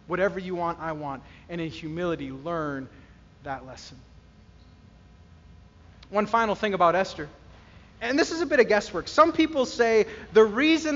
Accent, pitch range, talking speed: American, 180-260 Hz, 155 wpm